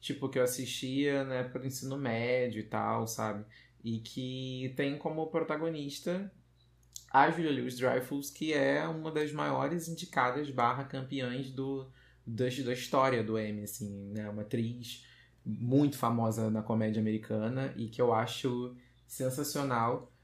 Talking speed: 140 wpm